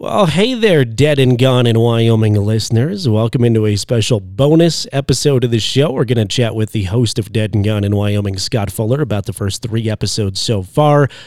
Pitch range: 115-140 Hz